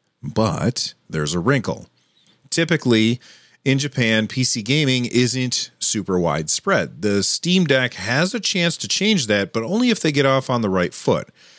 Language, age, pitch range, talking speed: English, 40-59, 105-140 Hz, 160 wpm